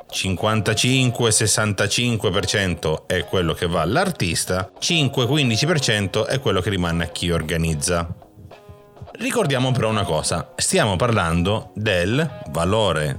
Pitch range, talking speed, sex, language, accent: 80-120 Hz, 95 wpm, male, Italian, native